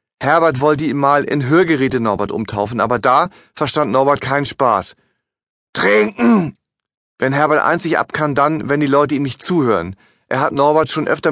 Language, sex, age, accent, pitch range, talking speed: German, male, 30-49, German, 135-160 Hz, 170 wpm